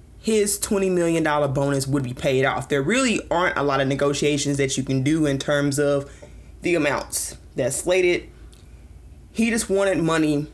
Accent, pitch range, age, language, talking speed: American, 140-180 Hz, 20-39, English, 170 wpm